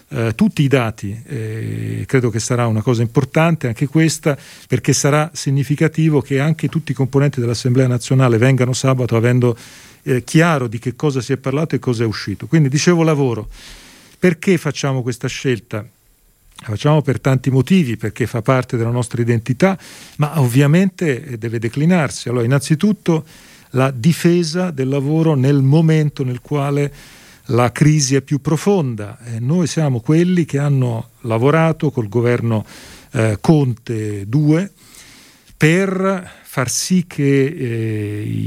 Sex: male